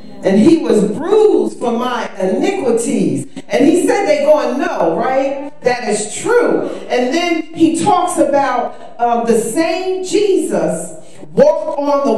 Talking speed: 145 wpm